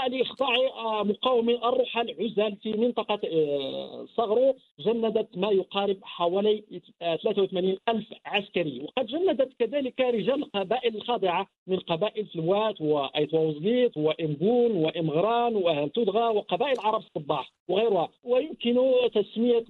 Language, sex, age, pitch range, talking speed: Arabic, male, 50-69, 190-235 Hz, 105 wpm